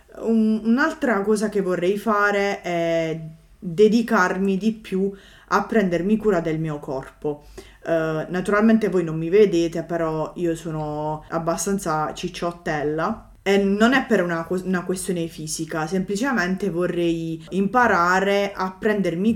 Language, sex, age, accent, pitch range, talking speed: Italian, female, 20-39, native, 165-210 Hz, 120 wpm